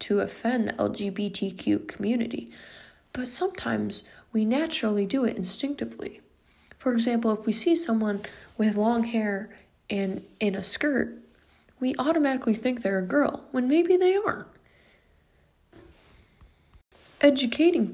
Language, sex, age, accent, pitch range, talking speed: English, female, 20-39, American, 200-255 Hz, 120 wpm